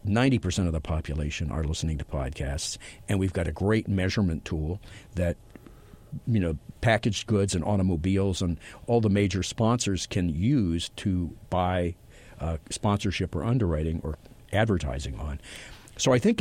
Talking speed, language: 150 wpm, English